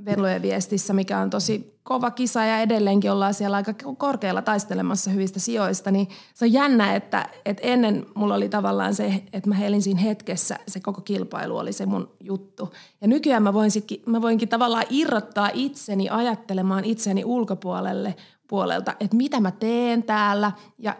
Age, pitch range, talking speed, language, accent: 30-49, 195-225 Hz, 165 wpm, Finnish, native